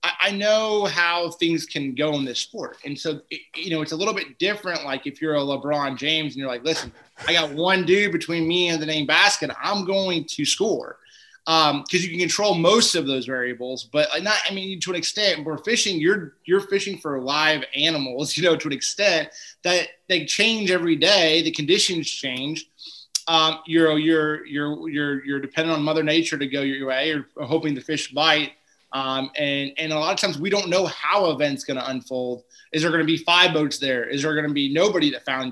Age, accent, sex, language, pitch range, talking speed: 20-39, American, male, English, 145-175 Hz, 220 wpm